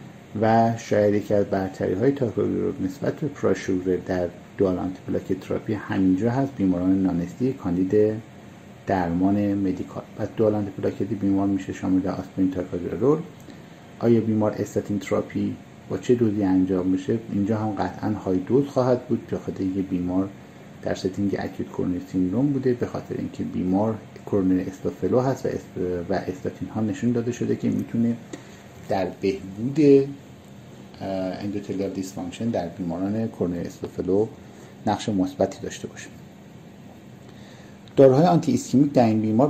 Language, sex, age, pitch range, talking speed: Persian, male, 50-69, 95-115 Hz, 130 wpm